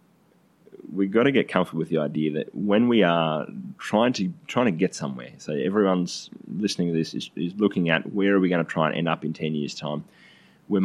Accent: Australian